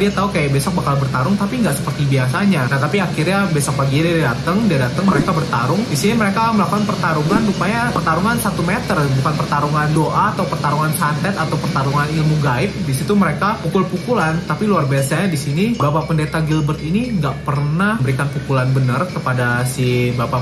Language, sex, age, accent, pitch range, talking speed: Indonesian, male, 20-39, native, 140-190 Hz, 175 wpm